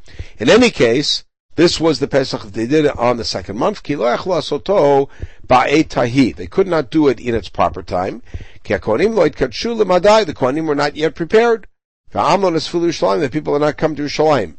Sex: male